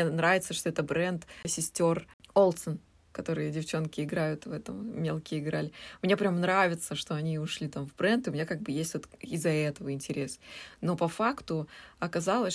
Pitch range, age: 150-180 Hz, 20-39